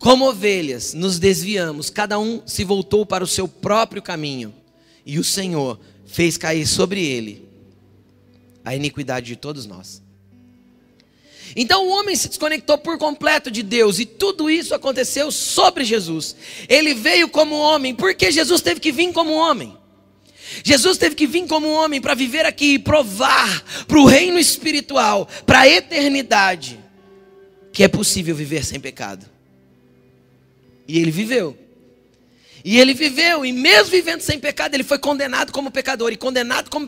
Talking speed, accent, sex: 155 wpm, Brazilian, male